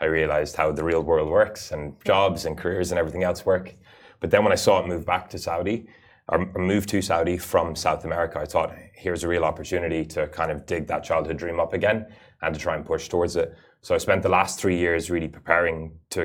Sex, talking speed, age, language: male, 235 wpm, 20-39, Arabic